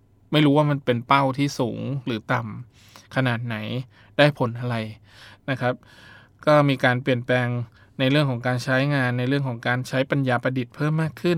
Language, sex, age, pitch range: Thai, male, 20-39, 120-135 Hz